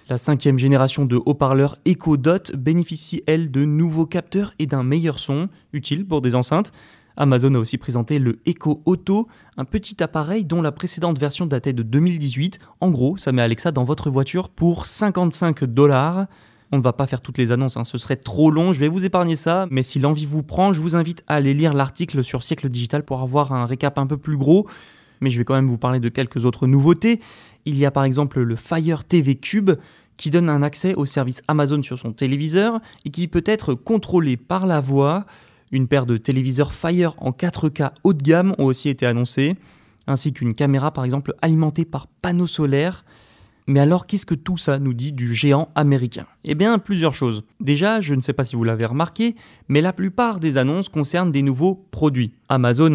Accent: French